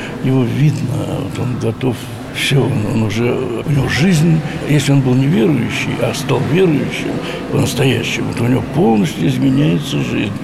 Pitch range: 120-150 Hz